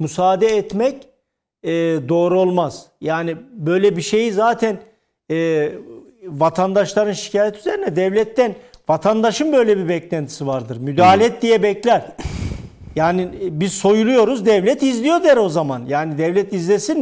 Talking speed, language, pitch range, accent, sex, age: 125 wpm, Turkish, 190-245 Hz, native, male, 50-69